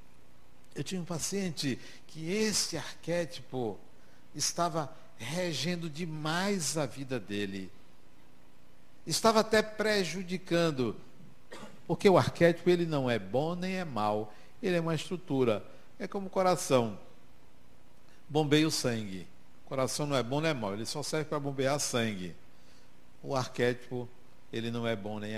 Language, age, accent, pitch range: Portuguese, 60-79, Brazilian, 115-170 Hz